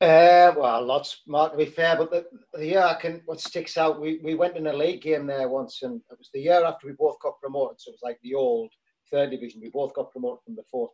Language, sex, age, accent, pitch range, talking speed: English, male, 40-59, British, 130-175 Hz, 270 wpm